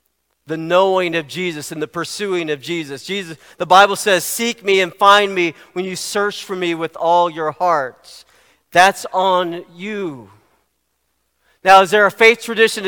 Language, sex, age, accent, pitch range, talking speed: English, male, 40-59, American, 170-210 Hz, 170 wpm